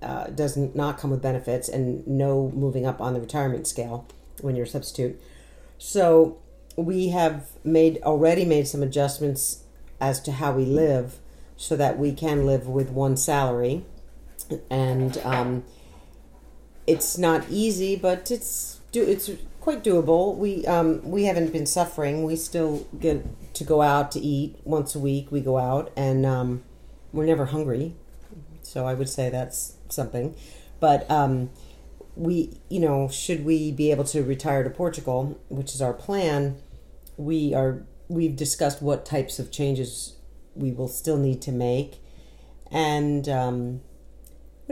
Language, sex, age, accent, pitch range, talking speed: English, female, 50-69, American, 125-160 Hz, 155 wpm